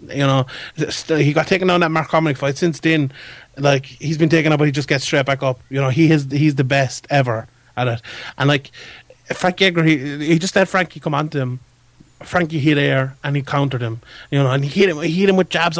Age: 30-49